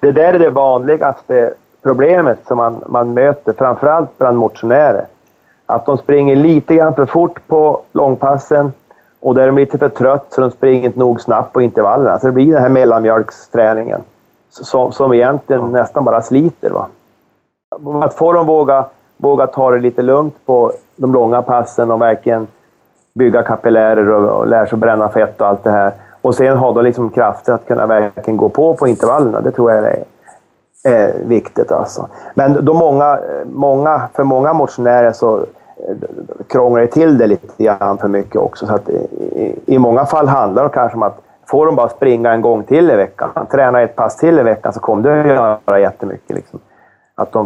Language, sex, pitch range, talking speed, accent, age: English, male, 115-145 Hz, 185 wpm, Swedish, 30-49